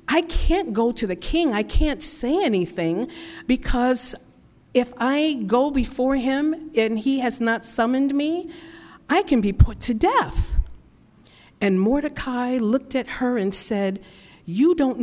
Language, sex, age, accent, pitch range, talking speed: English, female, 50-69, American, 185-265 Hz, 150 wpm